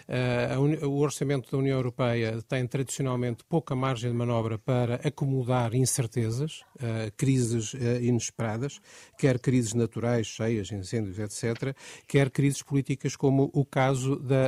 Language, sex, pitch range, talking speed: Portuguese, male, 120-140 Hz, 120 wpm